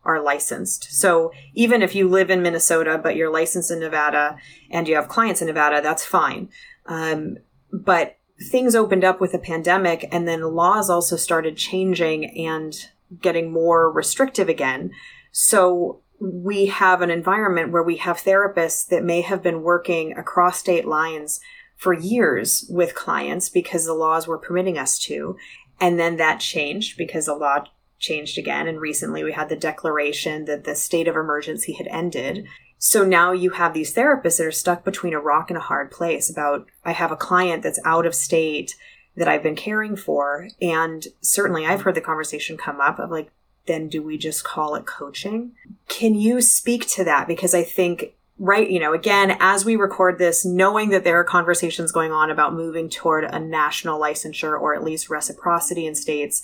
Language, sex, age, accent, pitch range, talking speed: English, female, 30-49, American, 155-185 Hz, 185 wpm